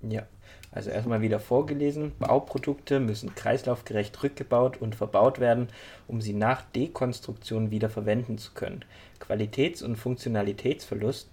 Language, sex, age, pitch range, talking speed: German, male, 20-39, 105-125 Hz, 120 wpm